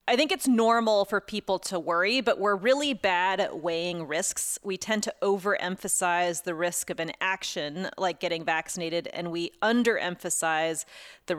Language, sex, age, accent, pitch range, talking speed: English, female, 30-49, American, 175-210 Hz, 165 wpm